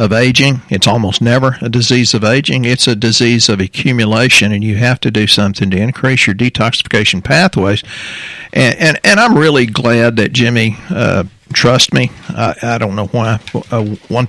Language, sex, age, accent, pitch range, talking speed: English, male, 50-69, American, 110-125 Hz, 180 wpm